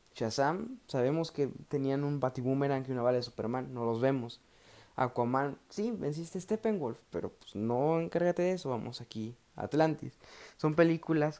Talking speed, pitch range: 170 wpm, 115-145 Hz